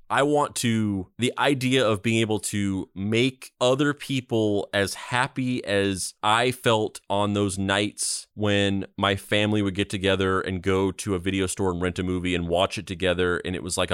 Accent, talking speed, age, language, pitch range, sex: American, 190 wpm, 30-49, English, 90-115 Hz, male